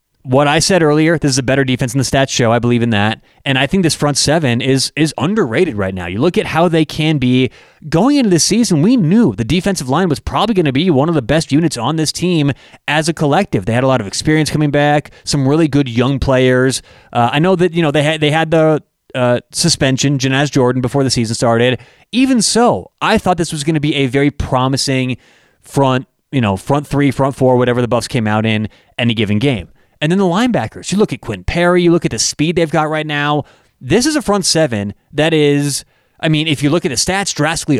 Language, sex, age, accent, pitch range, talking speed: English, male, 30-49, American, 130-175 Hz, 245 wpm